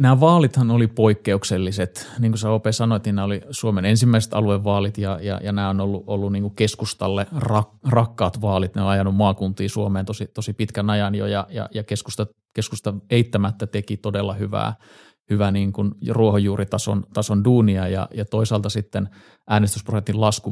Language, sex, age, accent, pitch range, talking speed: Finnish, male, 30-49, native, 100-110 Hz, 165 wpm